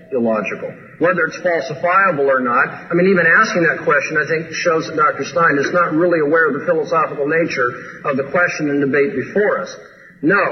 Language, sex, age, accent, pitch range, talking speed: English, male, 50-69, American, 155-200 Hz, 195 wpm